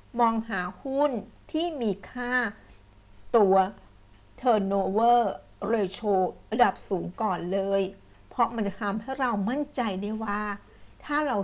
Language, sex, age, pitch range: Thai, female, 60-79, 195-240 Hz